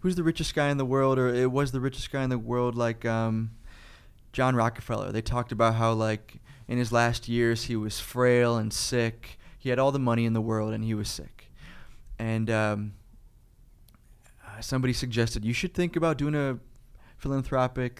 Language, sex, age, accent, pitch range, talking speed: English, male, 20-39, American, 110-125 Hz, 190 wpm